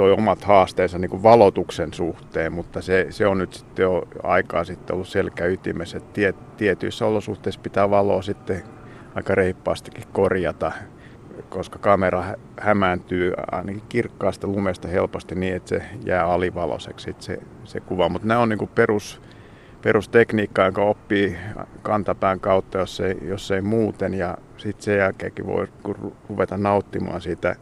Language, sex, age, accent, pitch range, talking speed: Finnish, male, 50-69, native, 95-105 Hz, 140 wpm